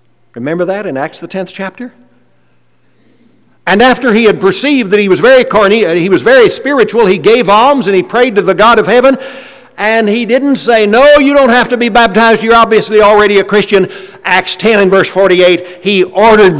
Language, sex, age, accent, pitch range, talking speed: English, male, 60-79, American, 135-195 Hz, 200 wpm